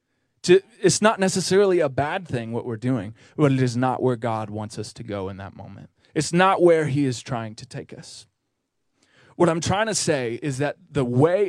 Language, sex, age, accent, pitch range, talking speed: English, male, 20-39, American, 125-155 Hz, 215 wpm